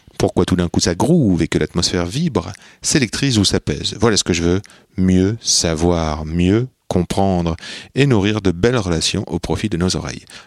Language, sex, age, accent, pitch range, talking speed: French, male, 30-49, French, 90-125 Hz, 185 wpm